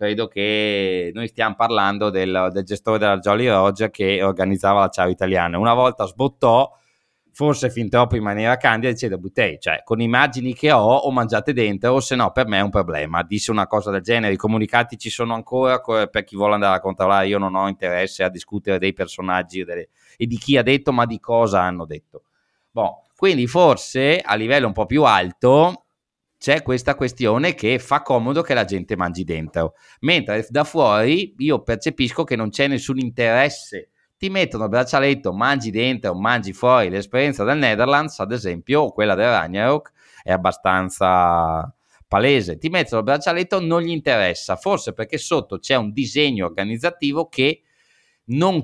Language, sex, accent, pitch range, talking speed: Italian, male, native, 100-135 Hz, 180 wpm